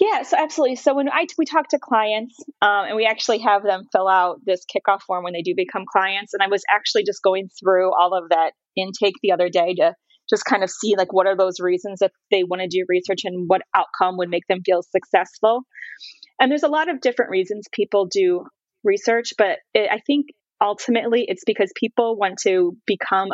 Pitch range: 185-225 Hz